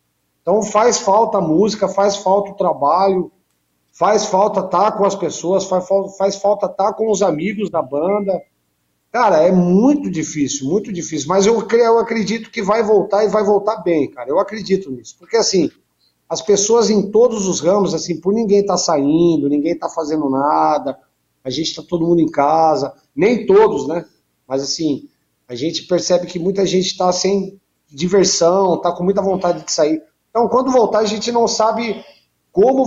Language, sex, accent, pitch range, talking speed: Portuguese, male, Brazilian, 150-205 Hz, 180 wpm